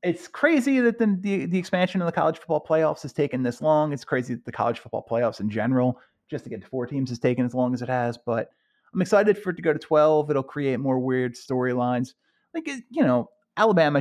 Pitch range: 120-185 Hz